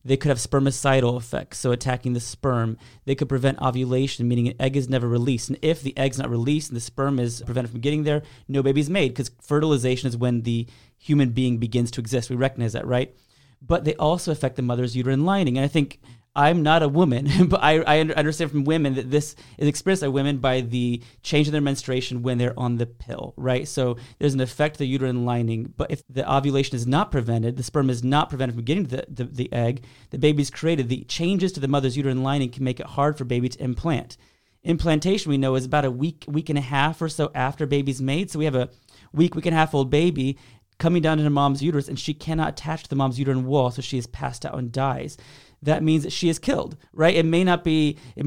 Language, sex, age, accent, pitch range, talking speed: English, male, 30-49, American, 125-150 Hz, 240 wpm